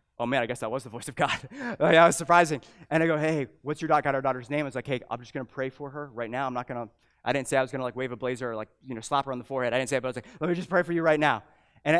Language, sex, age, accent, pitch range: English, male, 20-39, American, 130-180 Hz